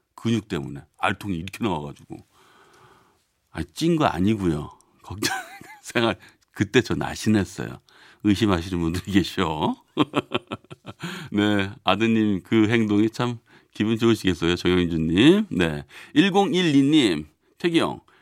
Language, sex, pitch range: Korean, male, 95-140 Hz